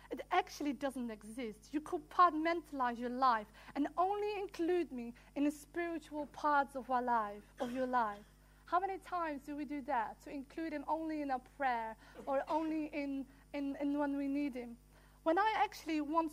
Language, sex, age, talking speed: English, female, 40-59, 185 wpm